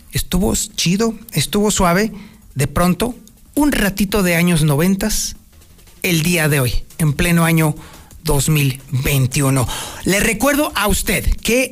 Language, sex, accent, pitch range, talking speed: Spanish, male, Mexican, 150-215 Hz, 125 wpm